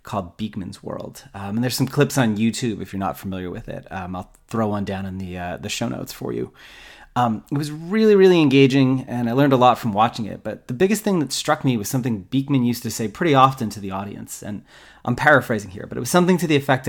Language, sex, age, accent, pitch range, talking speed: English, male, 30-49, American, 115-145 Hz, 255 wpm